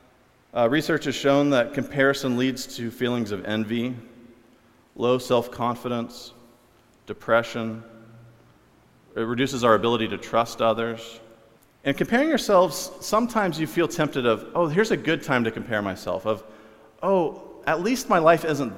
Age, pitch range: 40-59, 115-150 Hz